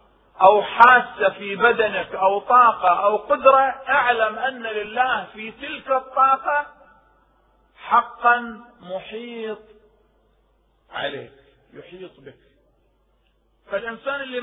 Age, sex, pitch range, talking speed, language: 40-59, male, 195-245 Hz, 85 wpm, Arabic